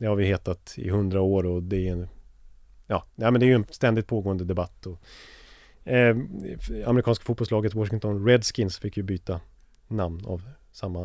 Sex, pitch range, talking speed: male, 95-115 Hz, 170 wpm